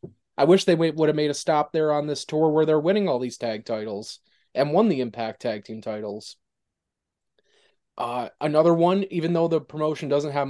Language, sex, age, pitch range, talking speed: English, male, 20-39, 125-160 Hz, 200 wpm